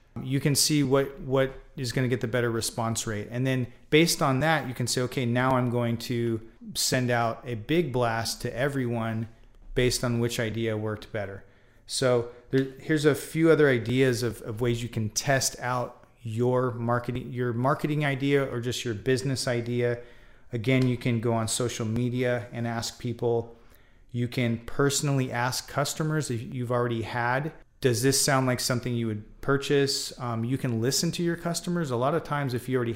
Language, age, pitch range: English, 30-49, 115-135 Hz